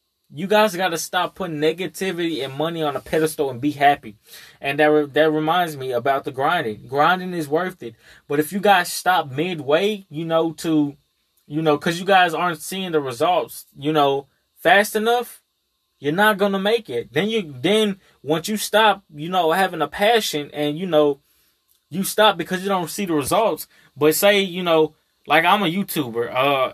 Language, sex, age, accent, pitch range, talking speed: English, male, 20-39, American, 150-185 Hz, 195 wpm